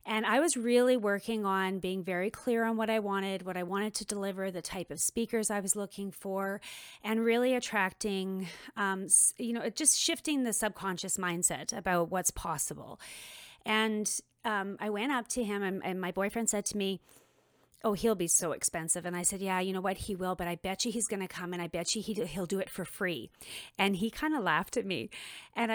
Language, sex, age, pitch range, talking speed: English, female, 30-49, 185-230 Hz, 215 wpm